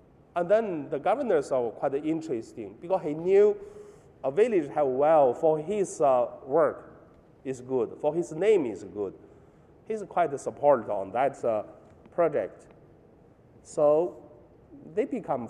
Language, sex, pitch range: Chinese, male, 140-220 Hz